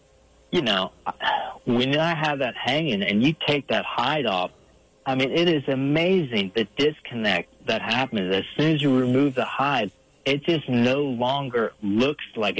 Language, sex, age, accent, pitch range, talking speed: English, male, 40-59, American, 100-135 Hz, 165 wpm